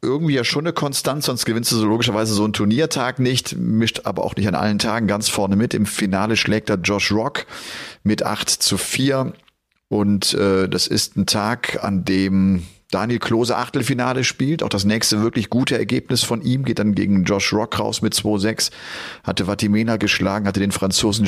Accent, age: German, 30-49